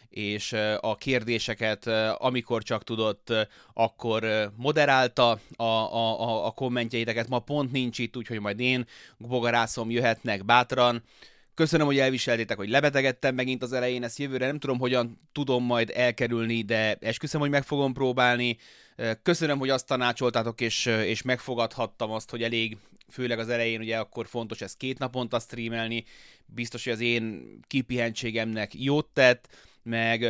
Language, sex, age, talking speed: Hungarian, male, 20-39, 145 wpm